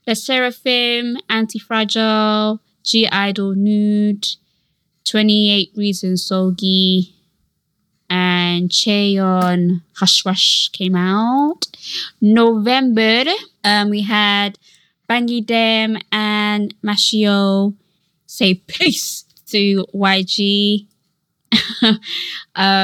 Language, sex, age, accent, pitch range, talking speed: English, female, 20-39, British, 185-225 Hz, 75 wpm